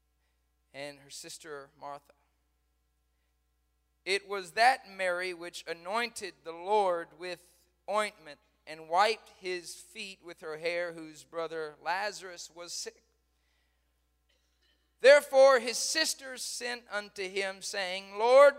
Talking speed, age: 110 wpm, 40-59